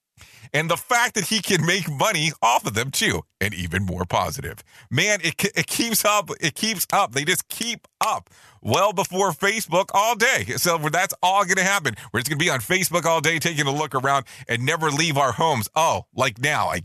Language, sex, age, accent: English, male, 40-59, American